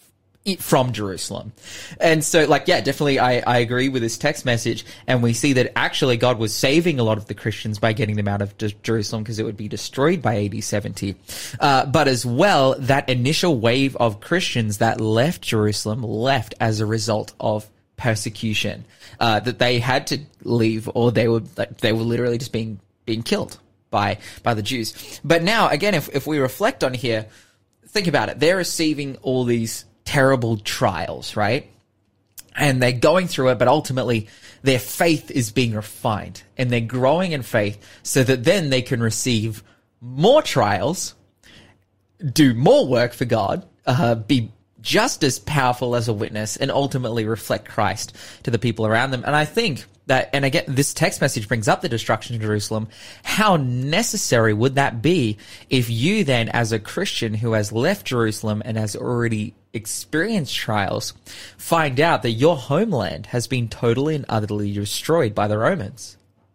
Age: 20-39